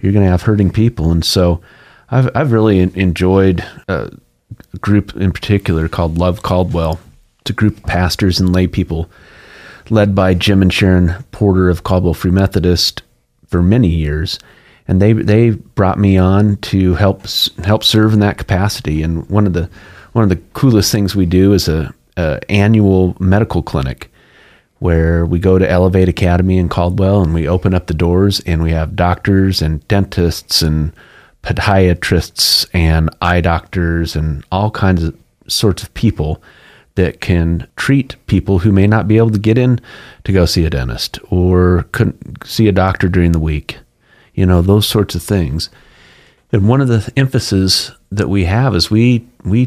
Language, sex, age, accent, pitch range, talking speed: English, male, 30-49, American, 85-105 Hz, 175 wpm